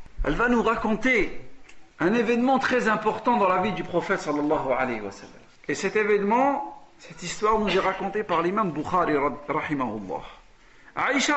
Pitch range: 185-250 Hz